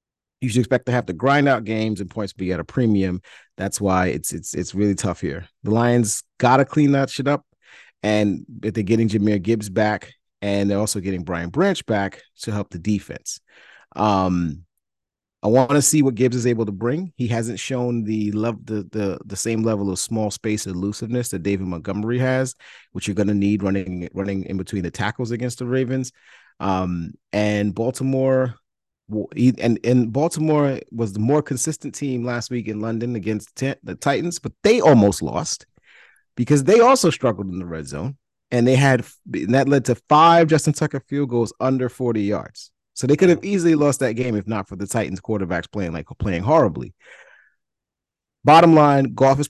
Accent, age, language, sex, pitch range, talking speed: American, 30-49, English, male, 100-130 Hz, 190 wpm